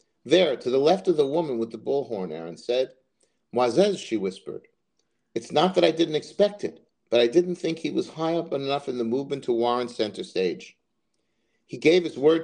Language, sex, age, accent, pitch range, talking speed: English, male, 50-69, American, 125-170 Hz, 205 wpm